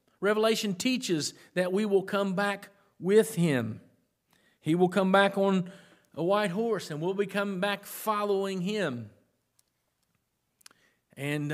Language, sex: English, male